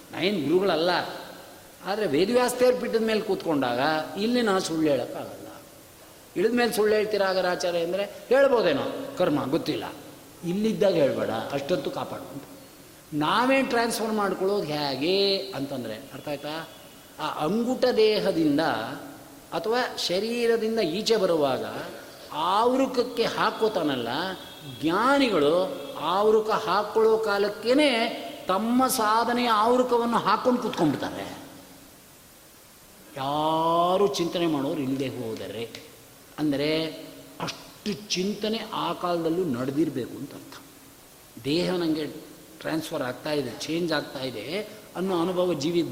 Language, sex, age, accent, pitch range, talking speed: Kannada, male, 50-69, native, 155-225 Hz, 95 wpm